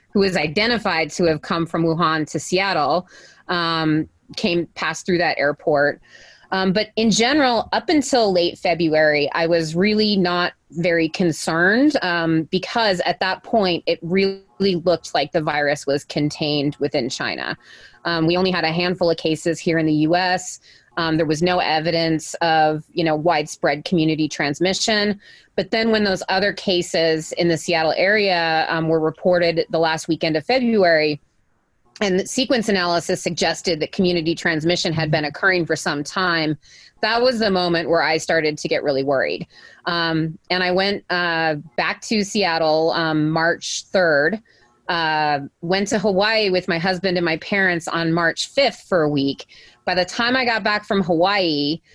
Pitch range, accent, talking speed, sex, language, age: 160-195 Hz, American, 170 wpm, female, English, 30-49